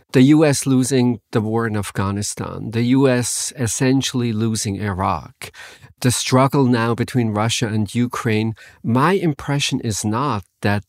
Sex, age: male, 50-69